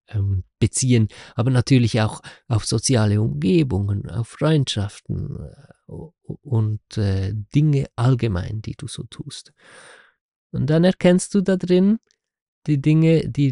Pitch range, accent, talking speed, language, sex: 105-140 Hz, German, 120 wpm, German, male